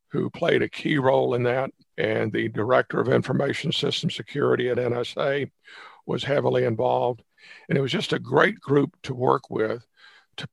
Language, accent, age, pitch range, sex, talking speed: English, American, 50-69, 120-155 Hz, male, 170 wpm